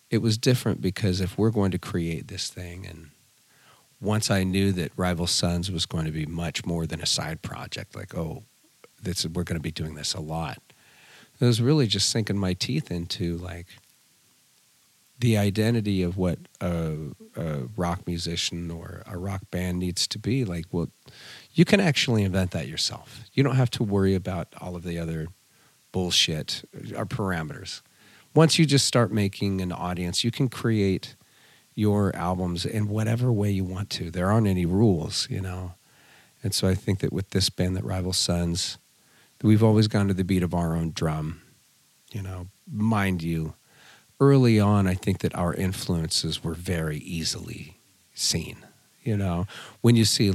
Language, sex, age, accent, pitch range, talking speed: Swedish, male, 40-59, American, 85-110 Hz, 180 wpm